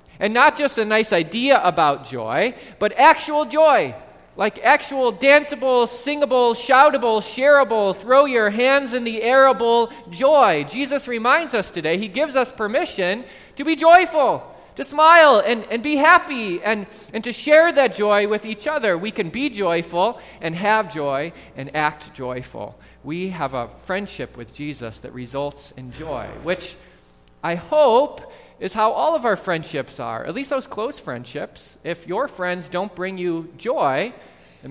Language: English